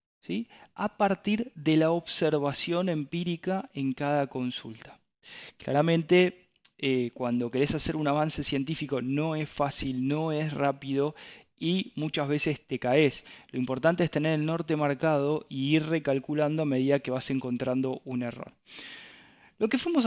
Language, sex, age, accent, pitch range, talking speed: Spanish, male, 20-39, Argentinian, 130-155 Hz, 145 wpm